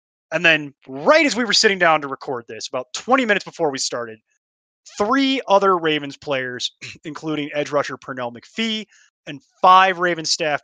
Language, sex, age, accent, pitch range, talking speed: English, male, 20-39, American, 130-180 Hz, 170 wpm